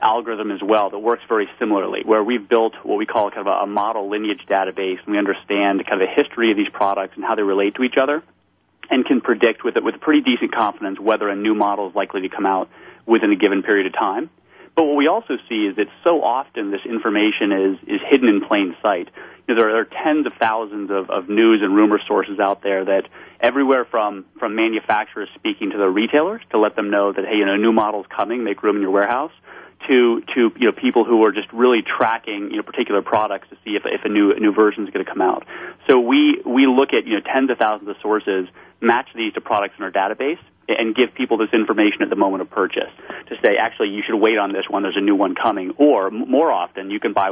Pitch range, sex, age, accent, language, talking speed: 100-135 Hz, male, 30-49, American, English, 245 wpm